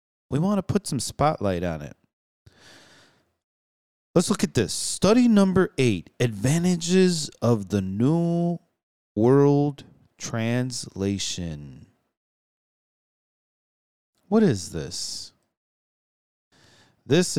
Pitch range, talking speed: 110-170 Hz, 85 wpm